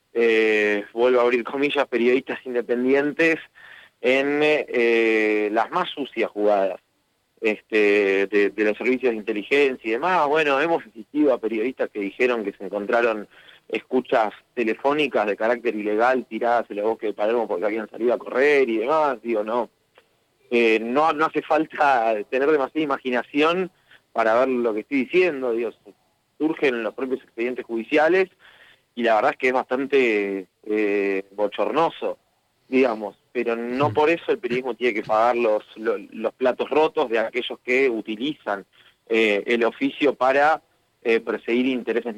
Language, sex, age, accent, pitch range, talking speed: Spanish, male, 30-49, Argentinian, 110-145 Hz, 150 wpm